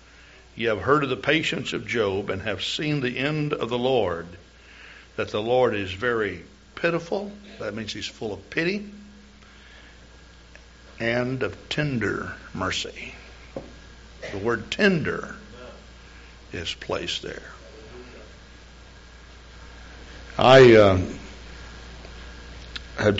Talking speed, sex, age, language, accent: 105 wpm, male, 60-79, English, American